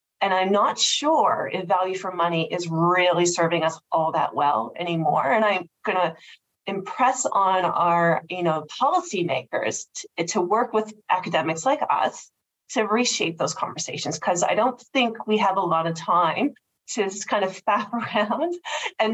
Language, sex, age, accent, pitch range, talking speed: English, female, 30-49, American, 170-220 Hz, 165 wpm